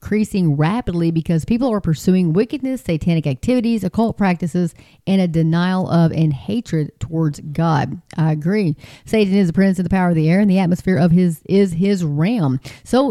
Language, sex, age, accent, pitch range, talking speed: English, female, 40-59, American, 165-220 Hz, 185 wpm